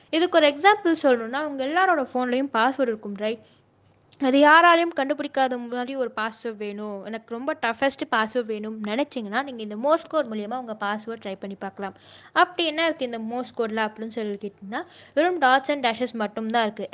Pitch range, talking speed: 225-285 Hz, 165 wpm